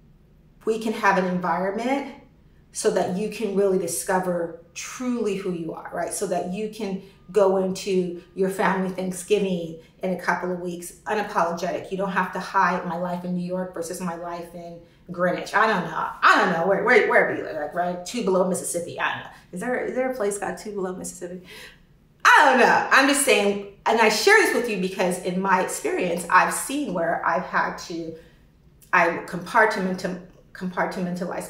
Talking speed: 190 wpm